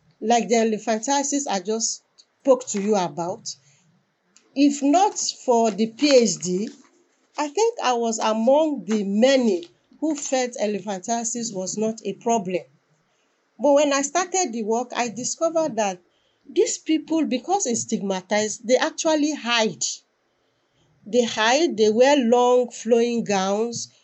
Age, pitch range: 40-59, 205-280 Hz